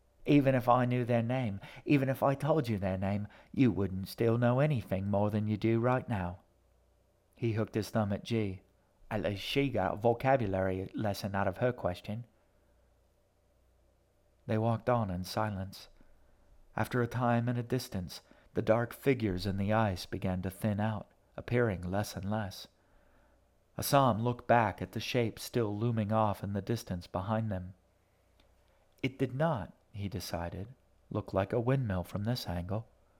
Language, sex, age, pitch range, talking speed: English, male, 40-59, 95-115 Hz, 165 wpm